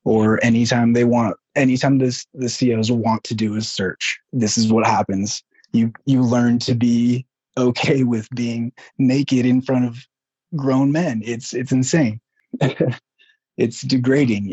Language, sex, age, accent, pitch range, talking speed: English, male, 20-39, American, 110-125 Hz, 150 wpm